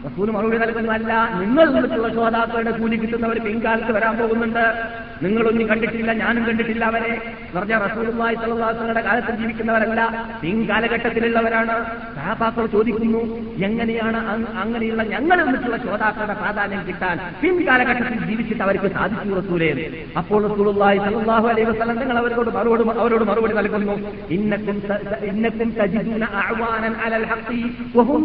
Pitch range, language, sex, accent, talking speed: 210-230 Hz, Malayalam, male, native, 90 wpm